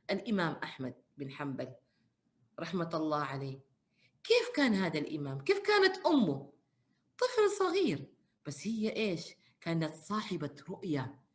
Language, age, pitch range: Arabic, 40-59, 165-275 Hz